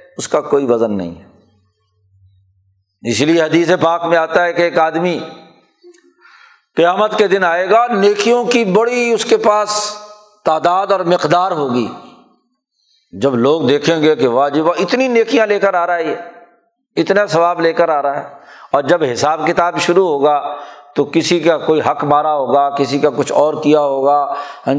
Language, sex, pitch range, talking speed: Urdu, male, 150-215 Hz, 175 wpm